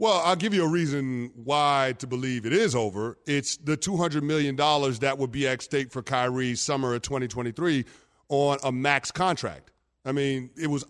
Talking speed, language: 185 wpm, English